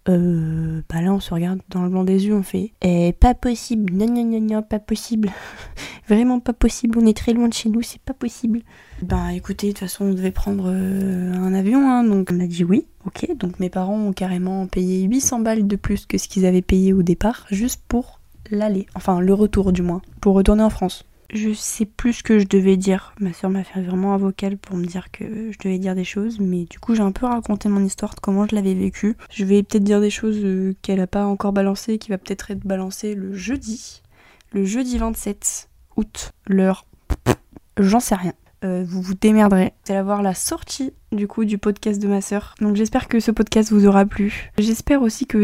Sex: female